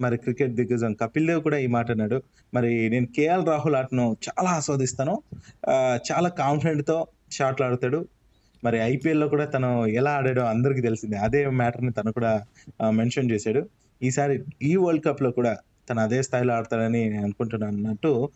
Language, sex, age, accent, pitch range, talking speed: Telugu, male, 20-39, native, 115-145 Hz, 145 wpm